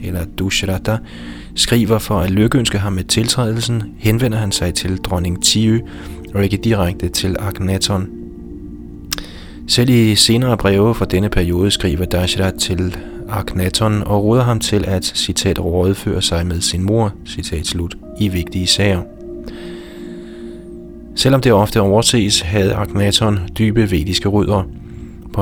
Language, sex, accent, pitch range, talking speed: Danish, male, native, 90-110 Hz, 125 wpm